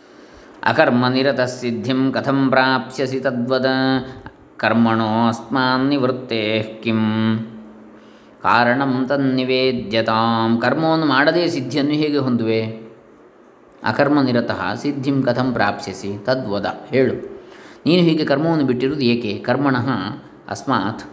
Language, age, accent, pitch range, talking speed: Kannada, 20-39, native, 110-135 Hz, 75 wpm